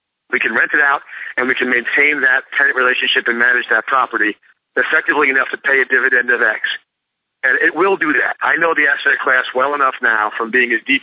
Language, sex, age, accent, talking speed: English, male, 40-59, American, 225 wpm